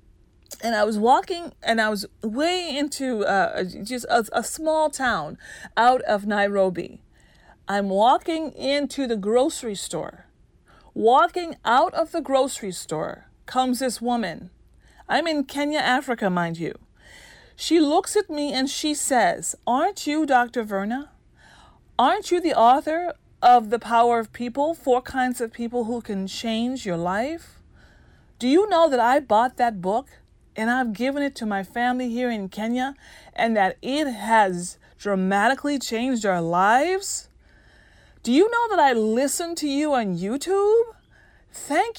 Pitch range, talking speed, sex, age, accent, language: 225-305 Hz, 150 wpm, female, 40-59, American, English